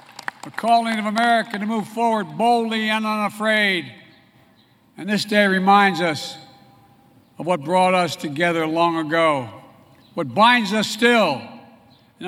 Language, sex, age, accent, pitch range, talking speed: English, male, 60-79, American, 185-245 Hz, 130 wpm